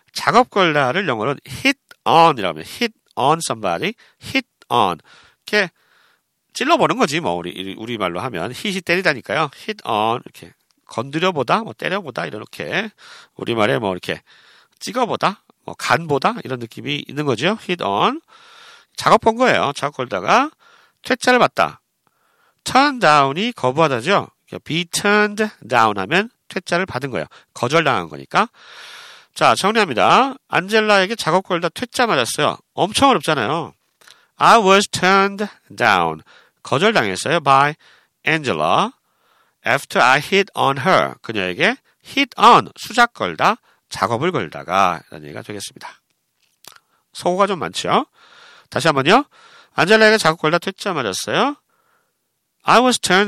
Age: 40-59